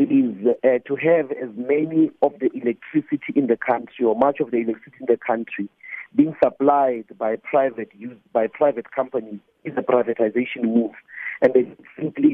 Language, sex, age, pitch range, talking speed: English, male, 50-69, 125-165 Hz, 170 wpm